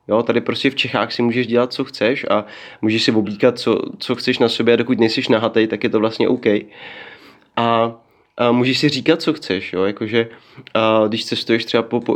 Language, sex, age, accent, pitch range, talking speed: Czech, male, 20-39, native, 115-130 Hz, 210 wpm